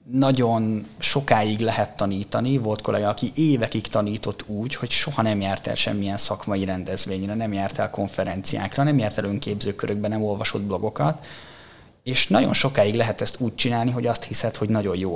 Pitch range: 105-125 Hz